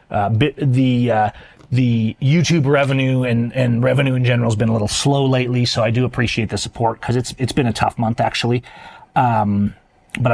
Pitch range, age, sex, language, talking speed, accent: 115-145 Hz, 30-49, male, English, 195 wpm, American